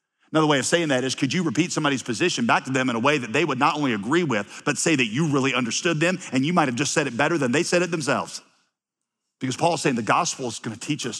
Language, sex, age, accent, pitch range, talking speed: English, male, 40-59, American, 125-170 Hz, 285 wpm